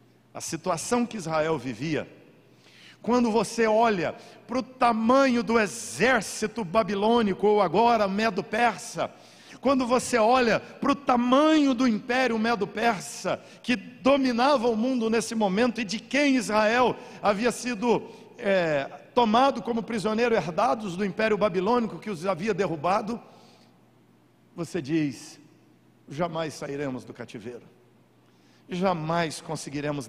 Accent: Brazilian